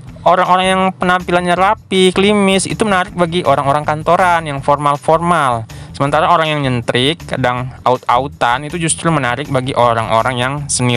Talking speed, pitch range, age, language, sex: 135 wpm, 140-170 Hz, 20-39, Indonesian, male